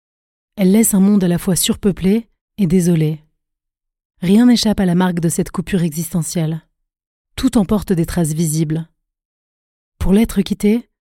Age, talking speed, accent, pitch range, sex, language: 30-49, 145 wpm, French, 170-205 Hz, female, French